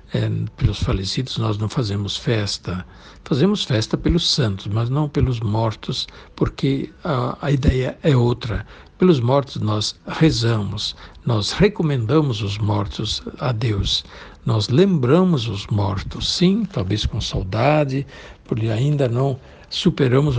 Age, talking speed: 60-79, 125 wpm